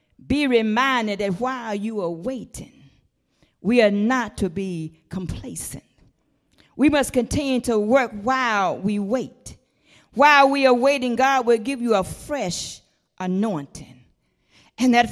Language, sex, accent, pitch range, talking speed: English, female, American, 195-265 Hz, 135 wpm